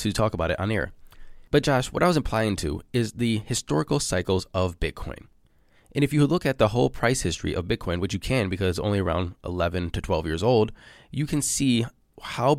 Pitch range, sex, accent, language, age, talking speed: 95-130 Hz, male, American, English, 20-39, 220 wpm